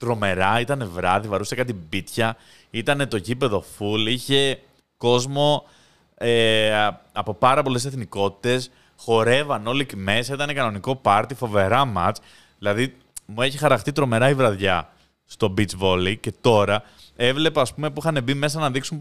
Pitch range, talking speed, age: 105-160 Hz, 145 wpm, 20-39